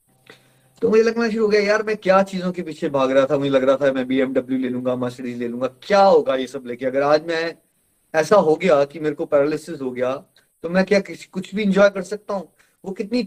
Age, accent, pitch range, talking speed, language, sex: 30-49, native, 140-185 Hz, 245 wpm, Hindi, male